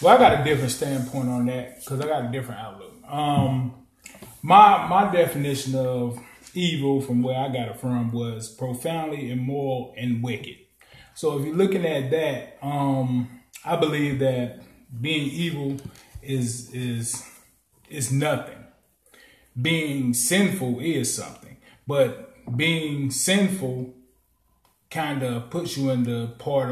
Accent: American